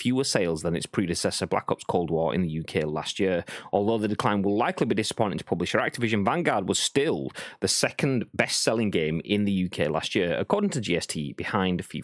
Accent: British